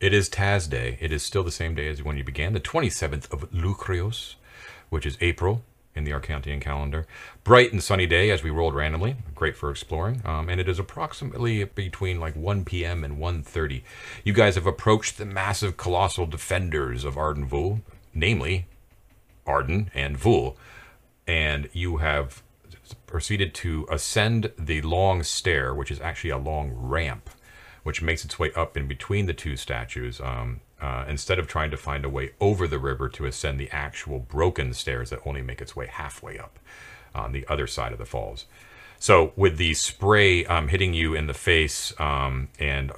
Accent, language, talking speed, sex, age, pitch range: American, English, 185 wpm, male, 40-59, 70-95 Hz